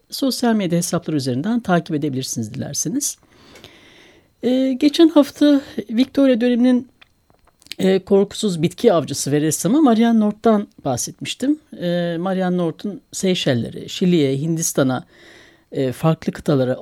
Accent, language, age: native, Turkish, 60-79